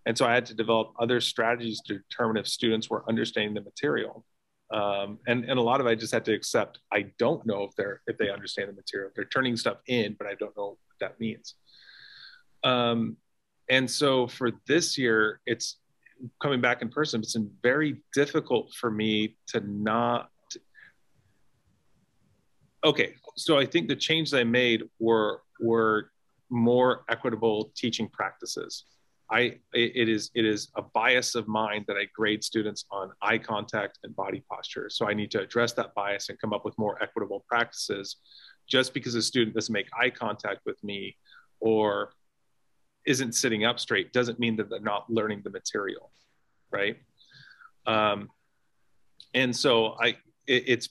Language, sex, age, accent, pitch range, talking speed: English, male, 30-49, American, 110-125 Hz, 170 wpm